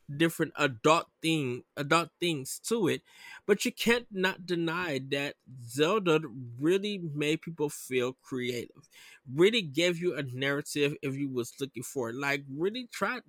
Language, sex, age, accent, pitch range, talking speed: English, male, 20-39, American, 135-175 Hz, 155 wpm